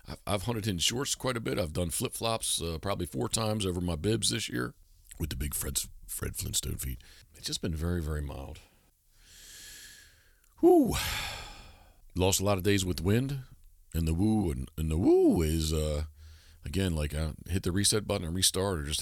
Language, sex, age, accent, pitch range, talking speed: English, male, 50-69, American, 80-100 Hz, 195 wpm